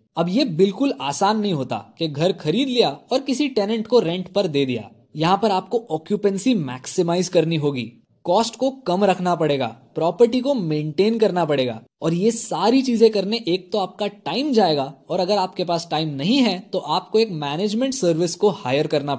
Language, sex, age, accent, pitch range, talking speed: Hindi, male, 20-39, native, 155-220 Hz, 190 wpm